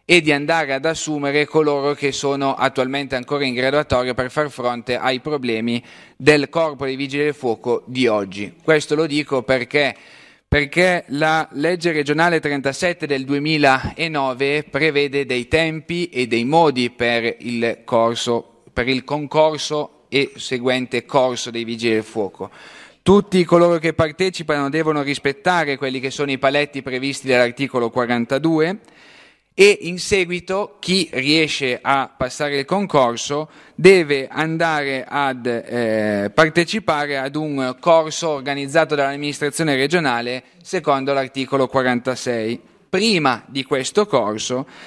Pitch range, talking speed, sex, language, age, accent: 130-160 Hz, 130 wpm, male, Italian, 30-49, native